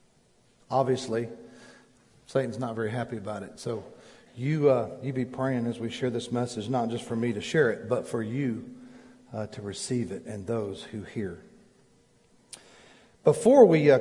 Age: 50-69